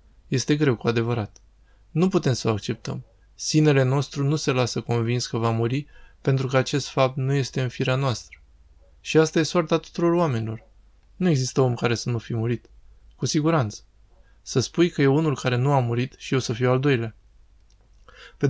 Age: 20-39